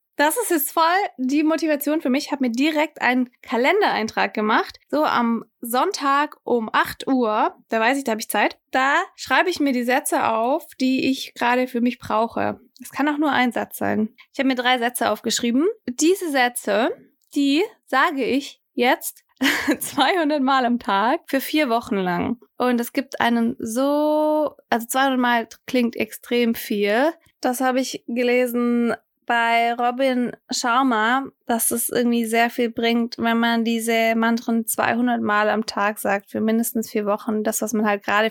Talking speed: 170 wpm